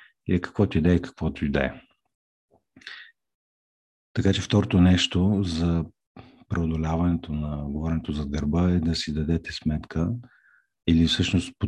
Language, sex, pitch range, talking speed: Bulgarian, male, 75-90 Hz, 140 wpm